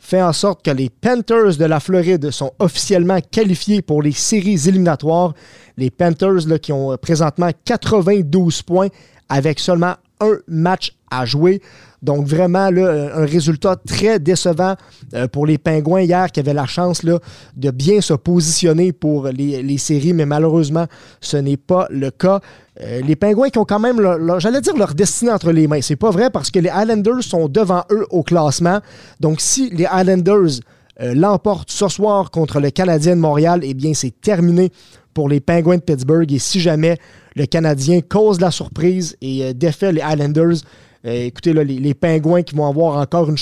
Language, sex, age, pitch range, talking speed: French, male, 30-49, 150-185 Hz, 185 wpm